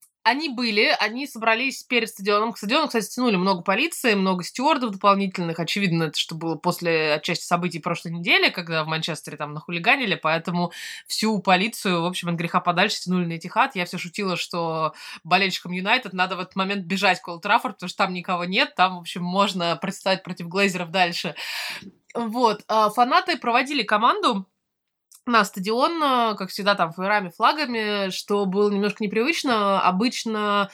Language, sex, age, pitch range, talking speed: Russian, female, 20-39, 170-220 Hz, 160 wpm